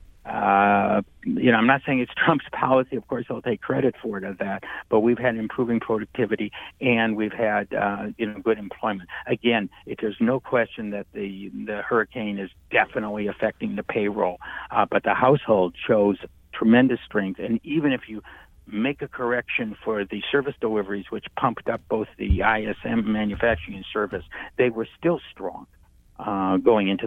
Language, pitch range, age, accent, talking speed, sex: English, 100-120 Hz, 60-79, American, 175 wpm, male